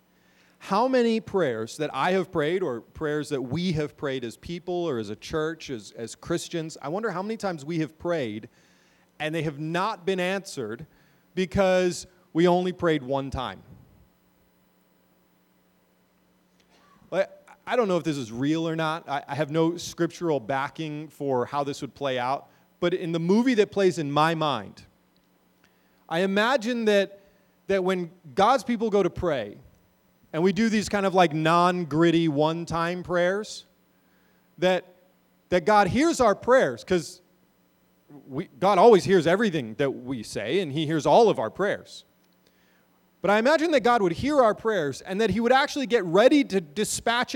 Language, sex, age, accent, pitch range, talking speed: English, male, 30-49, American, 155-210 Hz, 165 wpm